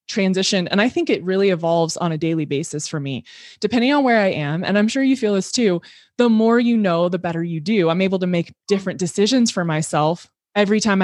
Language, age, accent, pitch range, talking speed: English, 20-39, American, 175-225 Hz, 235 wpm